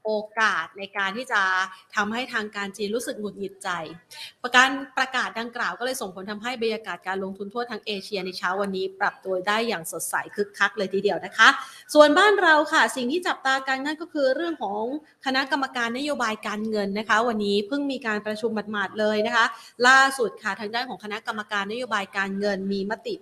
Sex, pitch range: female, 190-245 Hz